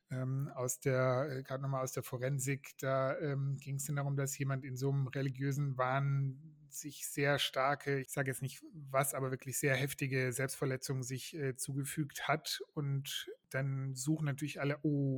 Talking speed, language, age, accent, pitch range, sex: 170 wpm, German, 30-49, German, 135-150 Hz, male